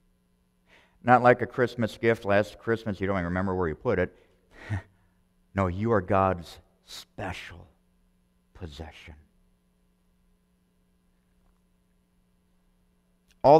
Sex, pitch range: male, 70-105 Hz